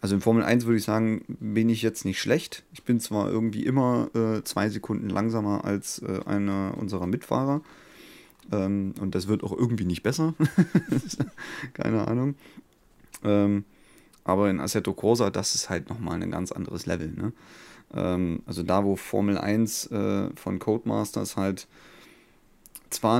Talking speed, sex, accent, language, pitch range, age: 160 wpm, male, German, German, 95-115 Hz, 30-49